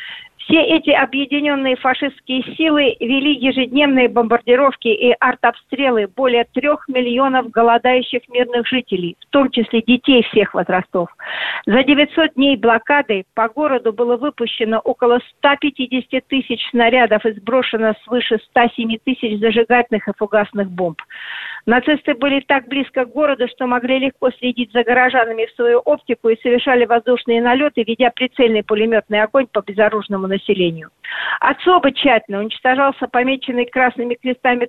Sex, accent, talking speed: female, native, 130 wpm